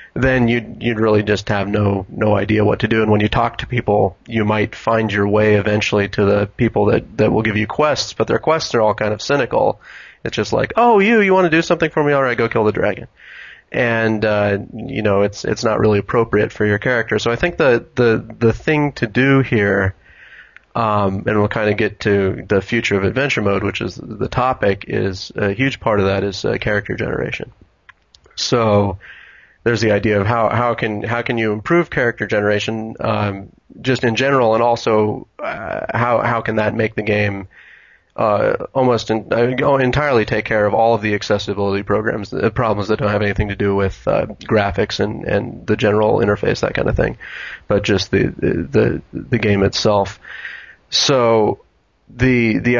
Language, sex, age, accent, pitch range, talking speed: English, male, 30-49, American, 105-120 Hz, 205 wpm